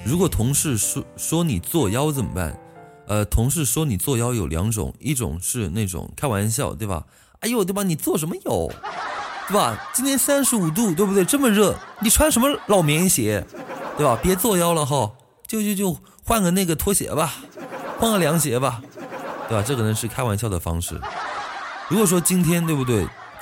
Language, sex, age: Chinese, male, 20-39